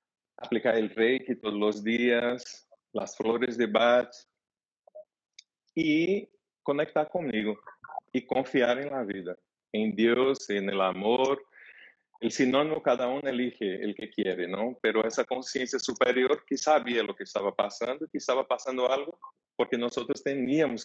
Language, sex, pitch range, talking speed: Spanish, male, 110-140 Hz, 140 wpm